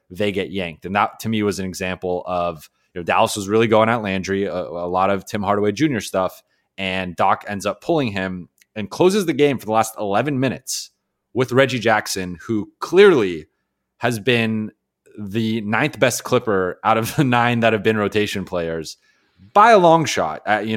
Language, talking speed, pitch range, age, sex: English, 195 wpm, 95-120 Hz, 30-49, male